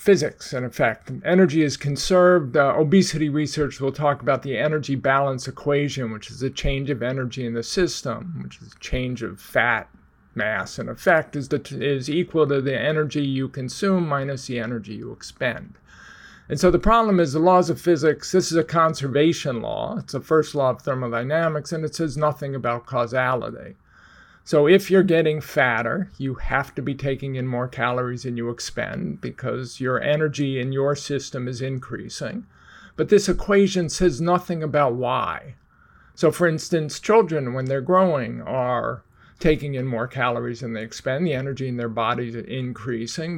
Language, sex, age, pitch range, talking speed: English, male, 50-69, 125-155 Hz, 175 wpm